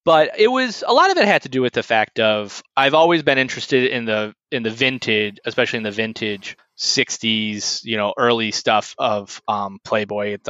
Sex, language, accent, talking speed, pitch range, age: male, English, American, 205 wpm, 105-130 Hz, 20-39